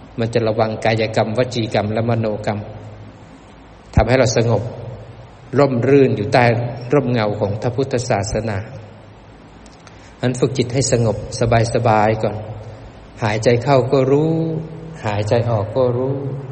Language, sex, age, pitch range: Thai, male, 20-39, 110-130 Hz